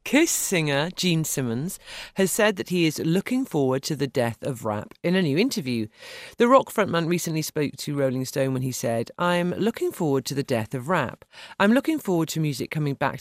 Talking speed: 210 wpm